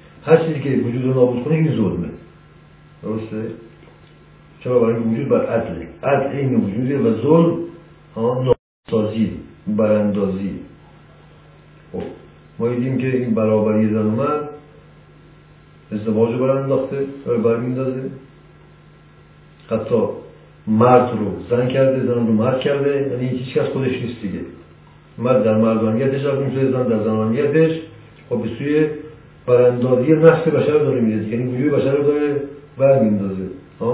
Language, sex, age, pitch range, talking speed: Persian, male, 60-79, 110-140 Hz, 135 wpm